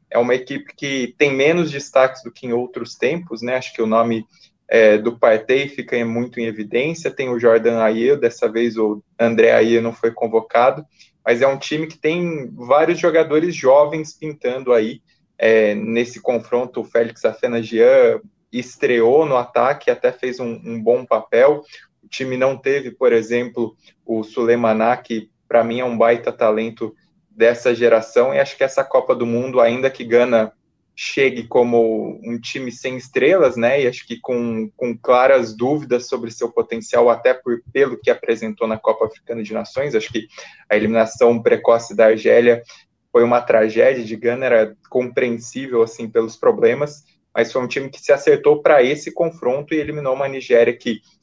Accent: Brazilian